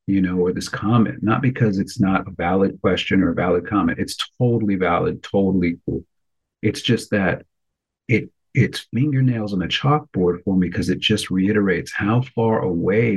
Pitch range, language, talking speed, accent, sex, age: 90-110 Hz, English, 180 wpm, American, male, 40-59